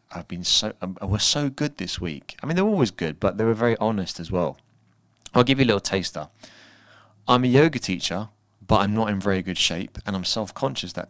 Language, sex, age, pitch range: English, male, 30-49, 90-115 Hz